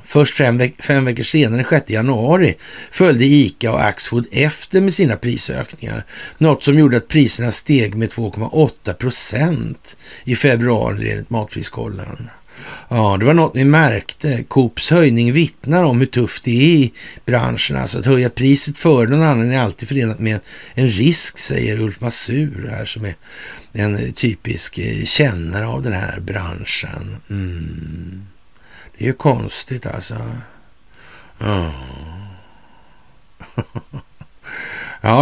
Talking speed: 135 wpm